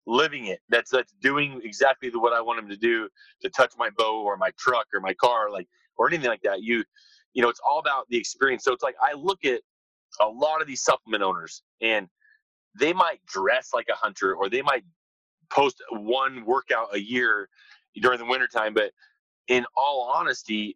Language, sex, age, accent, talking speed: English, male, 30-49, American, 200 wpm